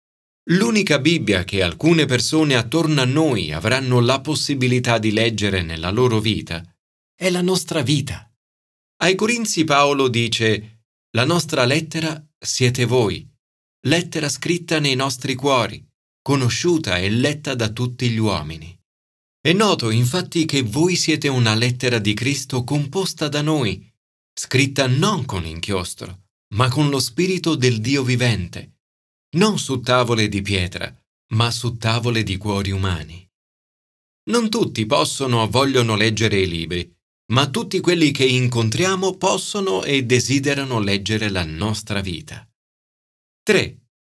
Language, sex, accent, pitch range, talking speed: Italian, male, native, 105-150 Hz, 130 wpm